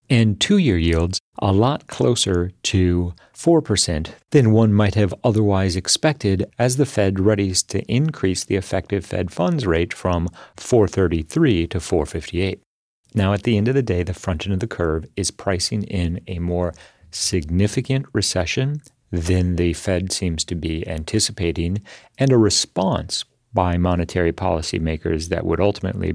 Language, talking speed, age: English, 150 wpm, 40-59